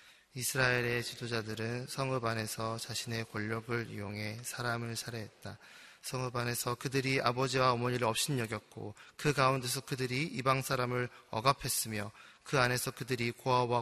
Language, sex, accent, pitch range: Korean, male, native, 115-135 Hz